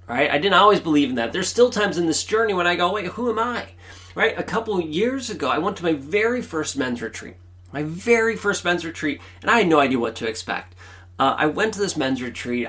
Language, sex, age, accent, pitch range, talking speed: English, male, 30-49, American, 105-150 Hz, 255 wpm